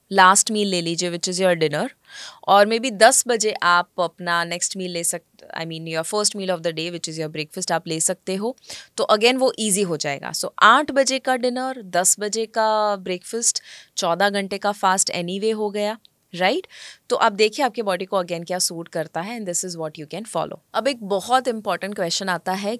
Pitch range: 180-225 Hz